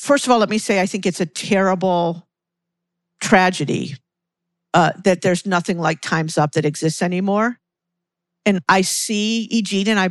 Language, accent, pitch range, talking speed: English, American, 170-190 Hz, 165 wpm